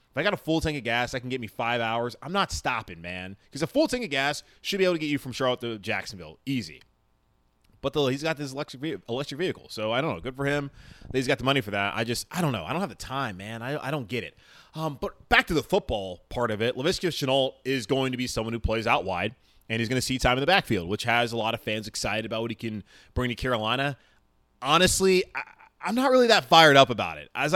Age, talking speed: 20-39, 275 wpm